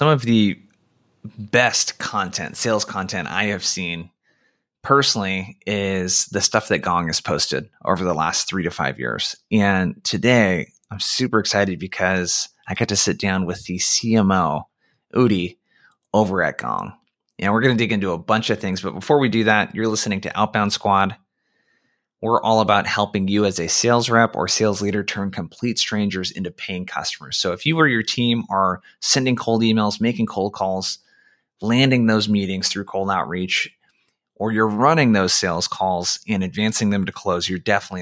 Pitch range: 95-115 Hz